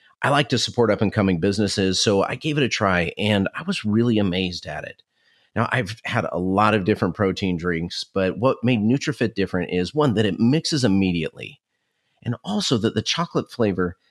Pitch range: 95-120 Hz